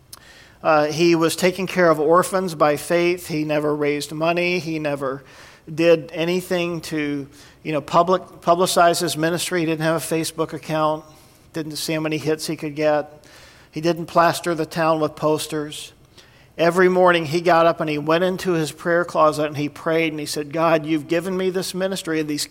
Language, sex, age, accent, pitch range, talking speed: English, male, 50-69, American, 155-185 Hz, 190 wpm